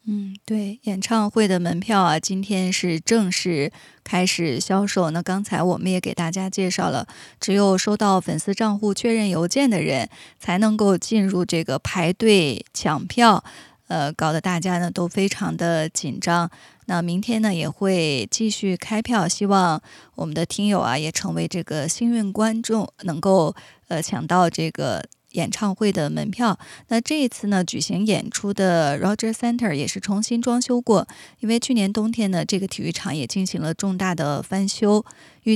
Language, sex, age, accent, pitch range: Chinese, female, 20-39, native, 175-215 Hz